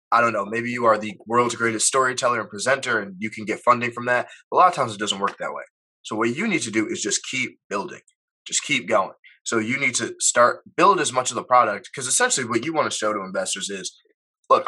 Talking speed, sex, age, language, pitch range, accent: 260 wpm, male, 20-39, English, 110-160 Hz, American